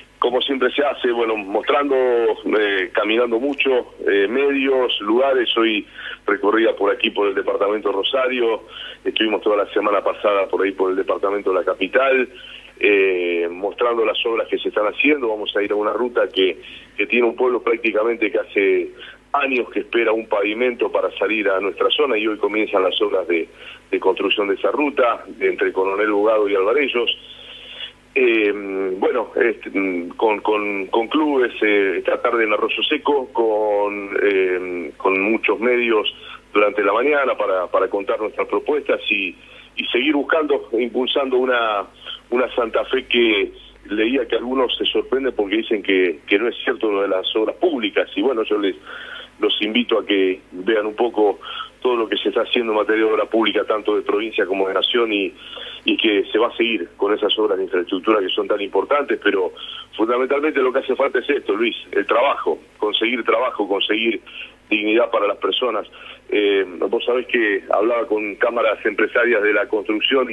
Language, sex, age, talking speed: Spanish, male, 40-59, 175 wpm